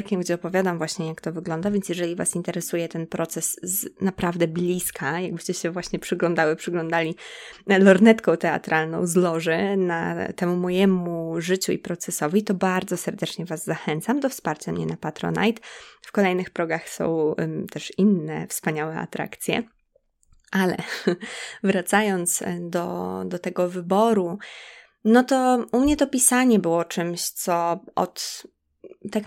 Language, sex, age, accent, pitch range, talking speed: Polish, female, 20-39, native, 175-215 Hz, 130 wpm